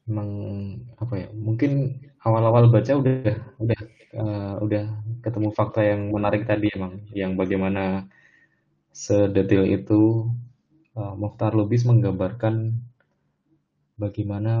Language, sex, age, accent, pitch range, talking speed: Indonesian, male, 20-39, native, 100-120 Hz, 105 wpm